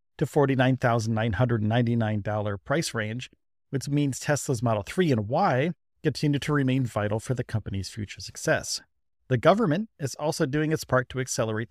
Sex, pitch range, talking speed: male, 110-145 Hz, 150 wpm